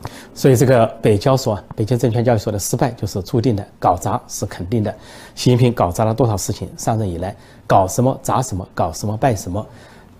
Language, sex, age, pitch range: Chinese, male, 30-49, 105-125 Hz